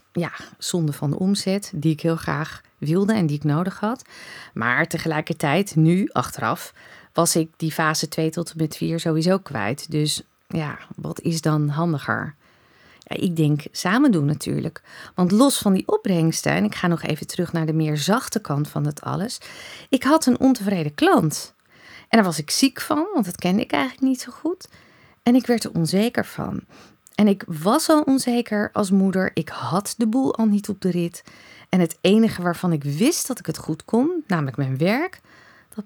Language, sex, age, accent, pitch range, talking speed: Dutch, female, 40-59, Dutch, 160-235 Hz, 195 wpm